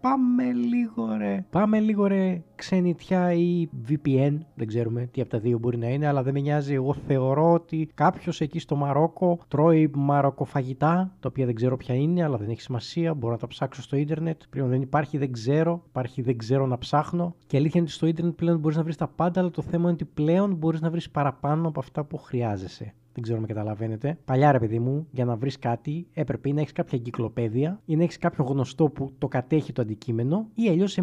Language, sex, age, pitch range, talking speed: Greek, male, 20-39, 130-175 Hz, 220 wpm